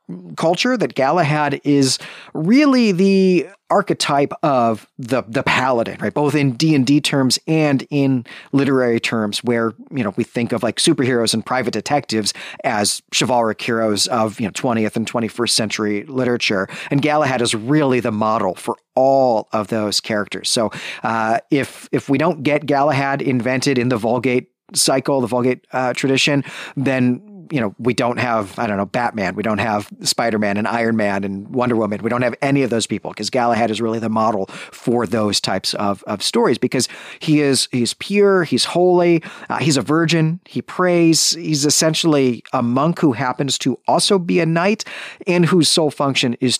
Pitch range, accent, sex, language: 115-150 Hz, American, male, English